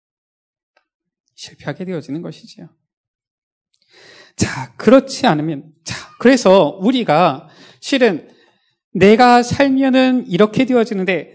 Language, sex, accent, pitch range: Korean, male, native, 160-245 Hz